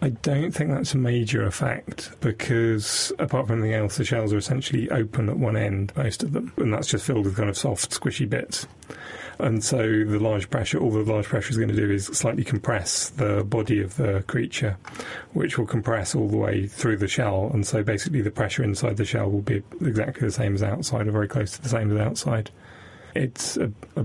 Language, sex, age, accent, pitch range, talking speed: English, male, 30-49, British, 105-125 Hz, 220 wpm